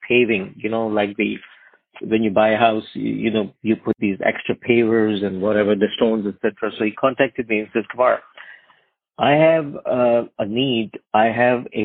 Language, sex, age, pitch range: English, male, 50-69, 110-135 Hz